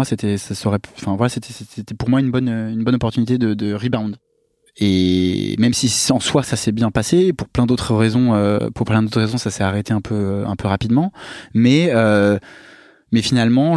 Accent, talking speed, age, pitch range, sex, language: French, 210 wpm, 20-39, 110-130 Hz, male, French